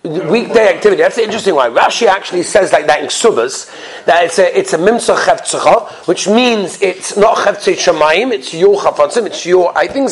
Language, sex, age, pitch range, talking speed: English, male, 40-59, 200-295 Hz, 170 wpm